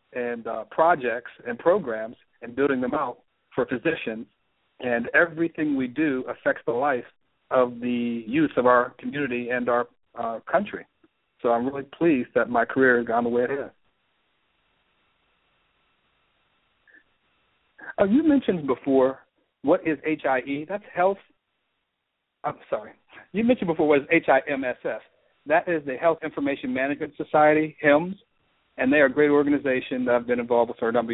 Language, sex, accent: English, male, American